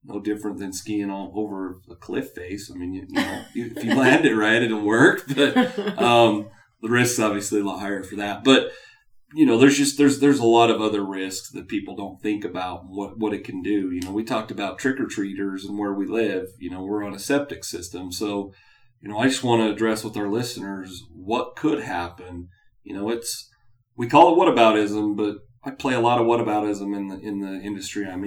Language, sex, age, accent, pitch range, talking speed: English, male, 30-49, American, 100-120 Hz, 225 wpm